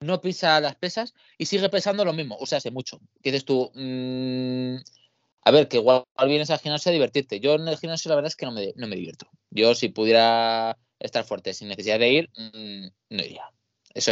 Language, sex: Spanish, male